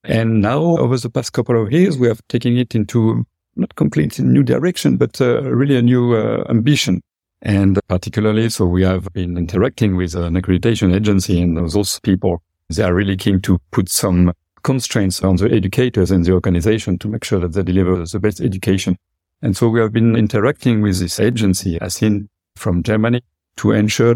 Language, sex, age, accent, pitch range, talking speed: English, male, 50-69, French, 95-120 Hz, 190 wpm